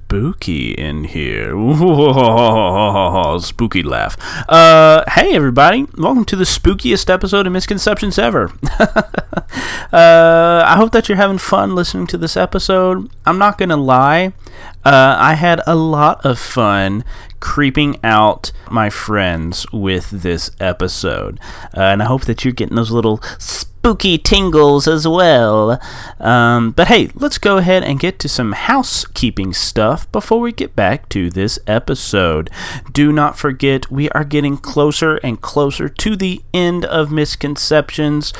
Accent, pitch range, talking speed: American, 115-180 Hz, 145 wpm